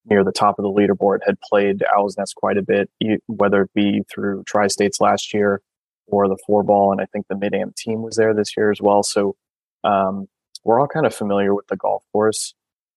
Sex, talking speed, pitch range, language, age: male, 215 wpm, 100-110 Hz, English, 20-39